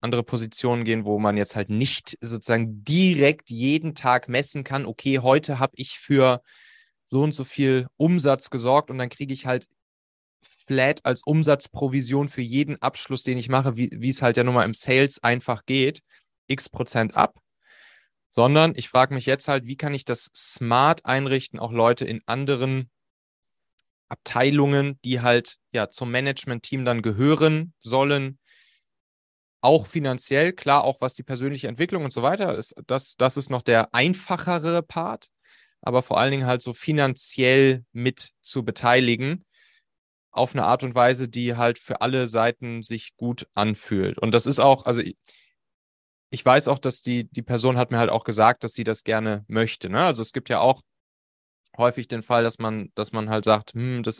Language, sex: German, male